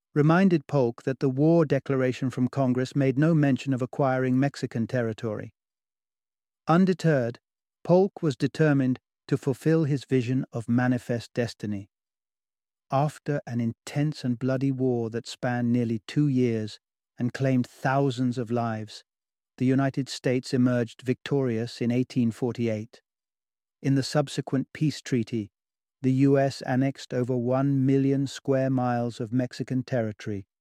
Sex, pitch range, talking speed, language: male, 120-145 Hz, 125 wpm, English